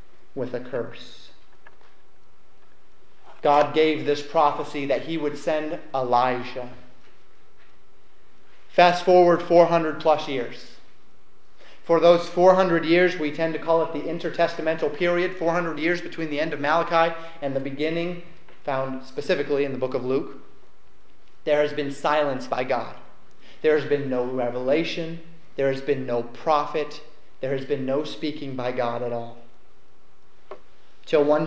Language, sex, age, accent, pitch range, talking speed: English, male, 30-49, American, 140-170 Hz, 140 wpm